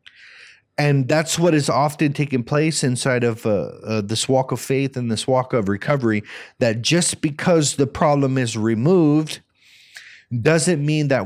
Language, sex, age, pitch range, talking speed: English, male, 30-49, 115-145 Hz, 160 wpm